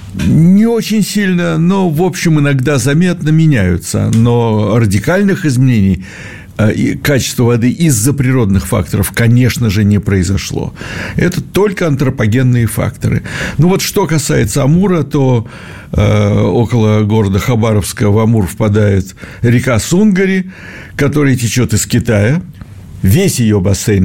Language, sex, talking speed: Russian, male, 115 wpm